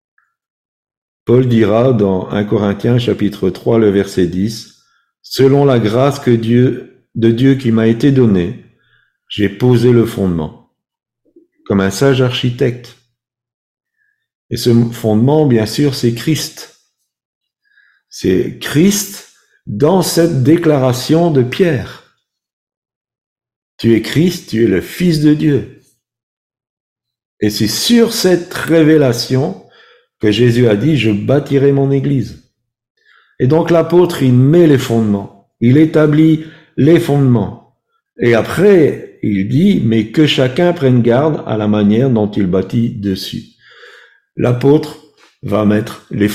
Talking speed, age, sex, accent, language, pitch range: 125 wpm, 50-69, male, French, French, 110-155 Hz